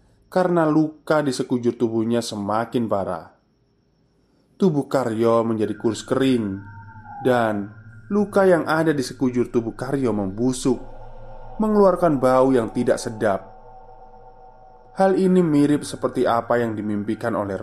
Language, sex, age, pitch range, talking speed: Indonesian, male, 20-39, 110-135 Hz, 115 wpm